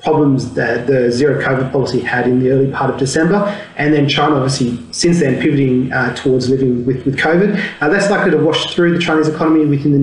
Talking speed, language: 220 wpm, English